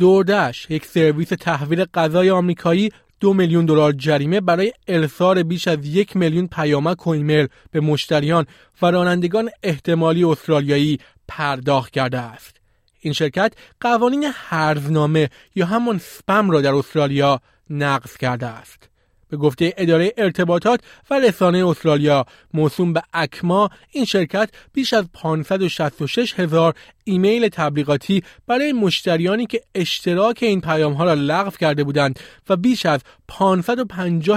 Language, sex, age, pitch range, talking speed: Persian, male, 30-49, 150-200 Hz, 130 wpm